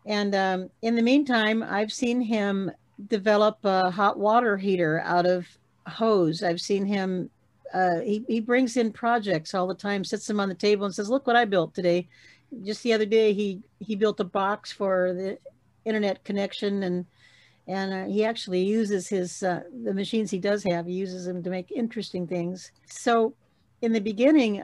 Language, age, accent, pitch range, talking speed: English, 50-69, American, 185-215 Hz, 190 wpm